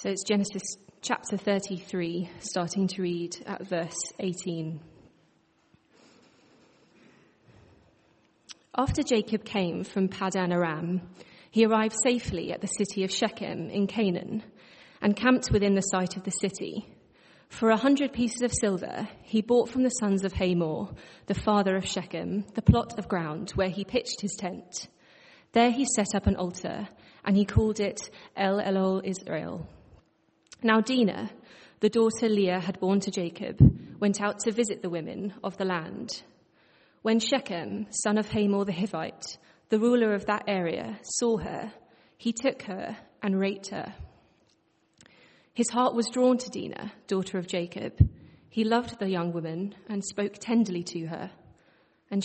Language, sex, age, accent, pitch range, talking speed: English, female, 30-49, British, 185-220 Hz, 150 wpm